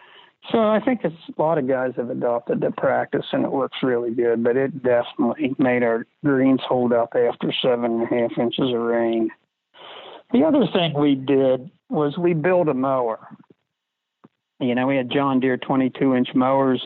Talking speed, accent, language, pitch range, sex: 185 wpm, American, English, 120-145 Hz, male